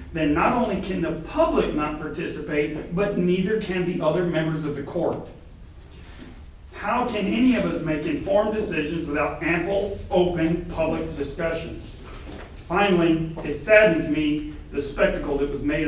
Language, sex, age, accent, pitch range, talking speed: English, male, 40-59, American, 145-190 Hz, 145 wpm